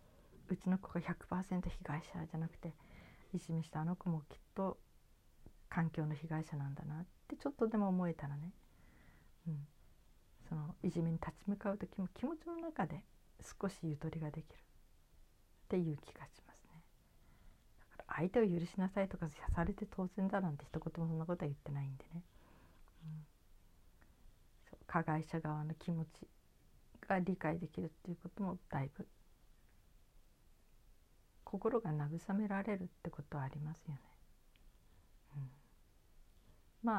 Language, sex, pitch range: Japanese, female, 150-190 Hz